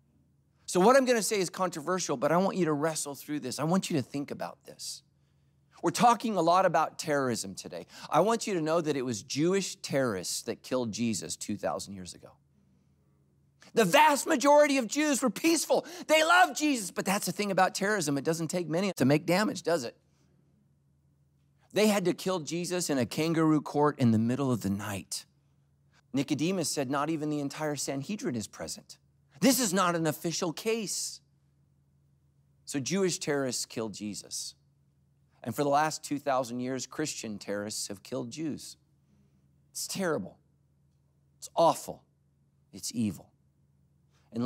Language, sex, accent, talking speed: English, male, American, 165 wpm